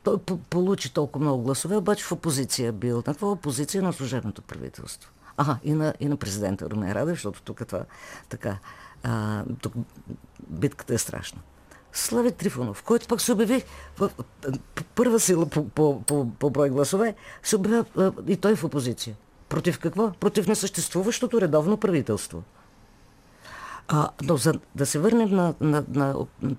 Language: Bulgarian